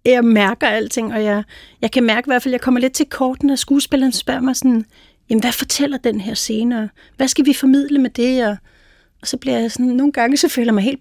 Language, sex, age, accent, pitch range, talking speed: Danish, female, 30-49, native, 210-265 Hz, 255 wpm